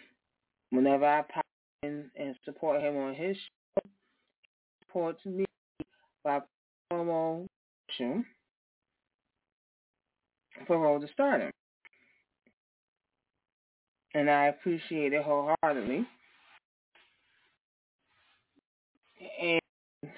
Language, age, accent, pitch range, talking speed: English, 20-39, American, 140-195 Hz, 75 wpm